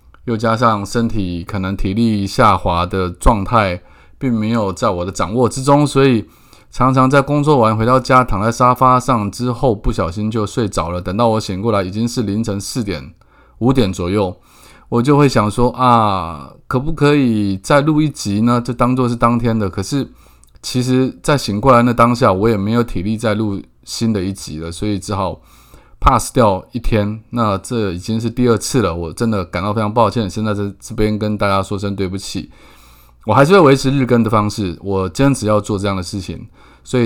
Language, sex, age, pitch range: Chinese, male, 20-39, 95-120 Hz